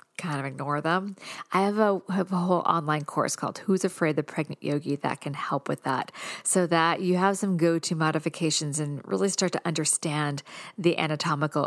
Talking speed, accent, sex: 195 wpm, American, female